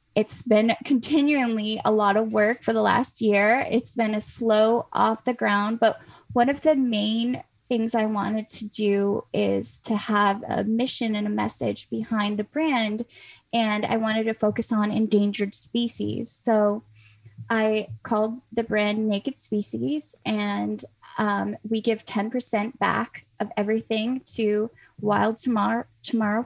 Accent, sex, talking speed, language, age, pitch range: American, female, 150 wpm, English, 10-29, 205-230 Hz